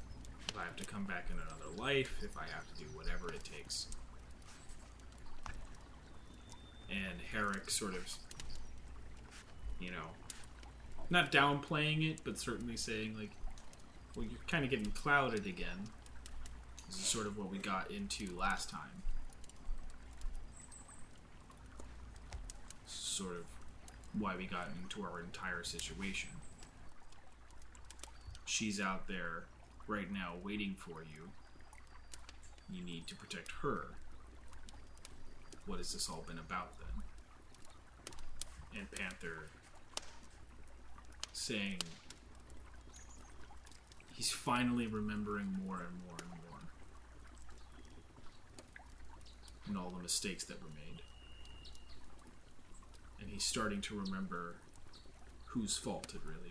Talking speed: 110 wpm